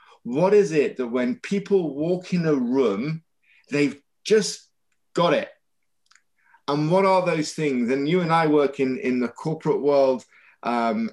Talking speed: 160 wpm